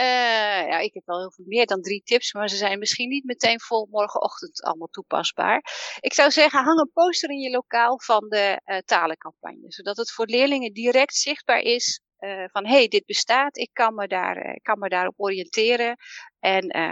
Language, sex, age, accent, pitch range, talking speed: Dutch, female, 40-59, Dutch, 190-260 Hz, 200 wpm